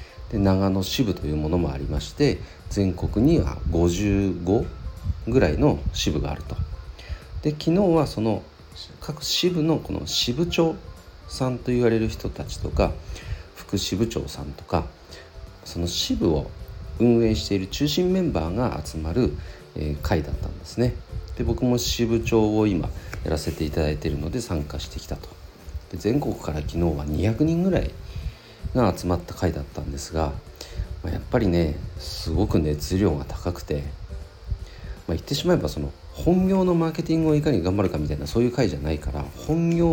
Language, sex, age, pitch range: Japanese, male, 40-59, 75-110 Hz